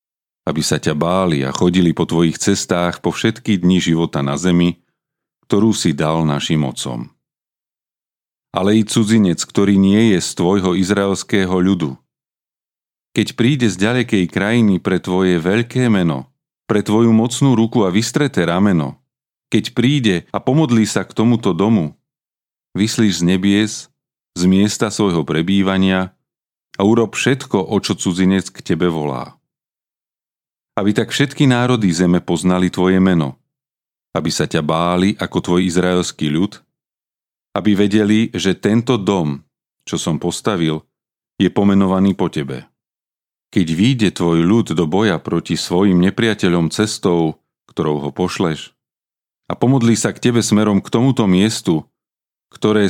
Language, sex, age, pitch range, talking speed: Slovak, male, 40-59, 90-110 Hz, 135 wpm